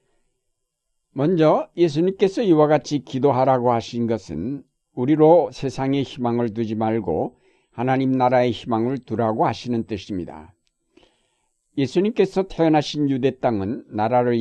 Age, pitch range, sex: 60-79, 115-150 Hz, male